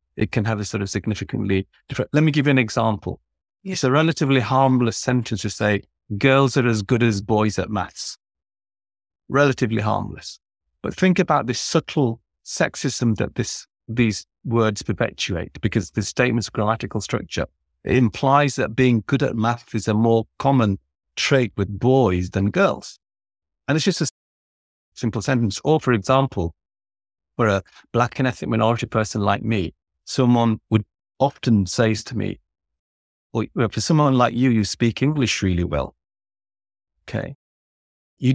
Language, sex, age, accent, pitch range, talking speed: English, male, 40-59, British, 100-130 Hz, 155 wpm